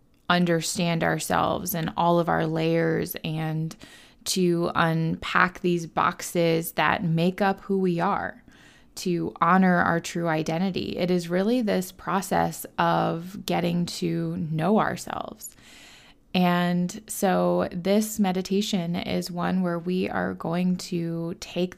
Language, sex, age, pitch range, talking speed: English, female, 20-39, 170-195 Hz, 125 wpm